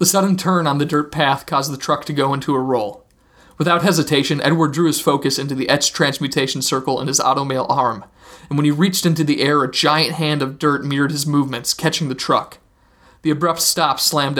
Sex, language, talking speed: male, English, 215 wpm